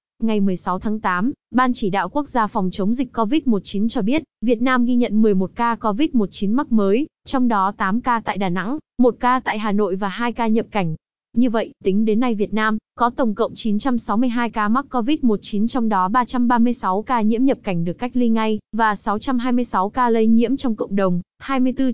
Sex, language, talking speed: female, Vietnamese, 205 wpm